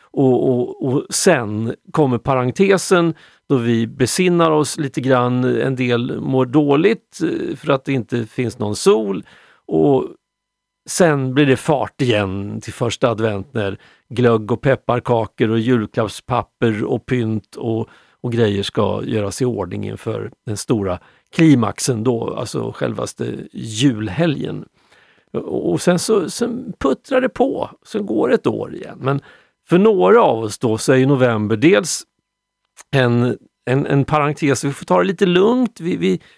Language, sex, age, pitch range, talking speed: Swedish, male, 50-69, 115-155 Hz, 150 wpm